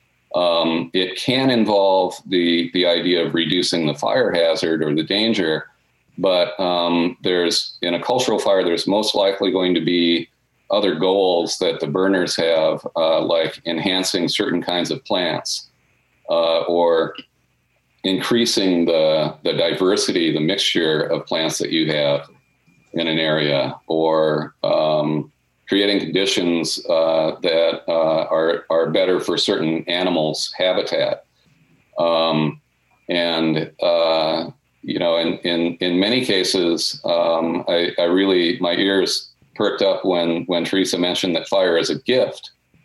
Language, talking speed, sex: English, 135 wpm, male